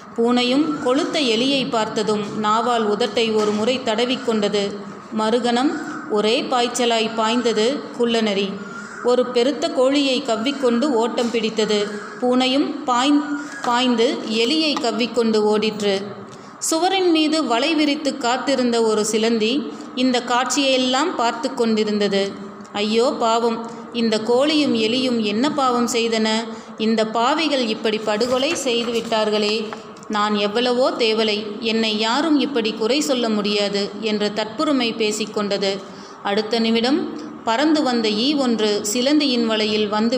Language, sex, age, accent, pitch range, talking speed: Tamil, female, 30-49, native, 215-255 Hz, 105 wpm